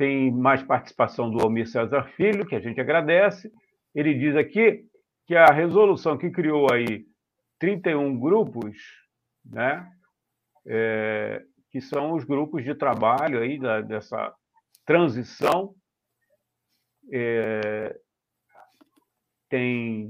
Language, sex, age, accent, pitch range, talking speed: Portuguese, male, 50-69, Brazilian, 120-170 Hz, 95 wpm